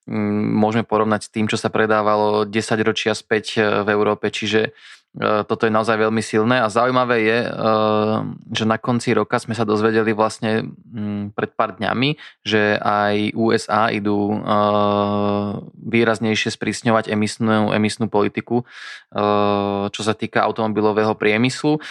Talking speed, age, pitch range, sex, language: 125 wpm, 20-39, 105-110 Hz, male, Slovak